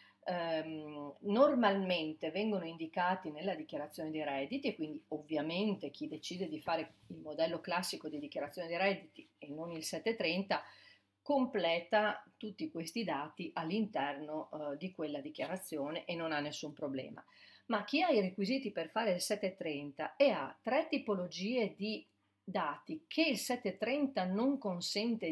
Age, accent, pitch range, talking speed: 40-59, native, 160-230 Hz, 140 wpm